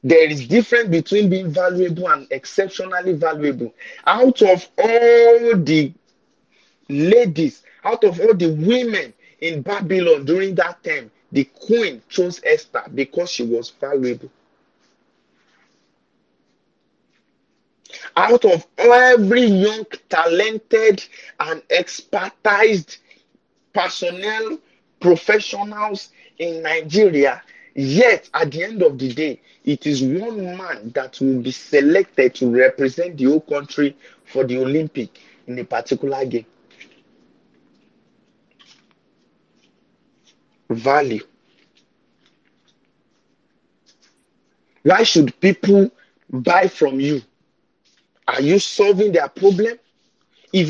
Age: 50-69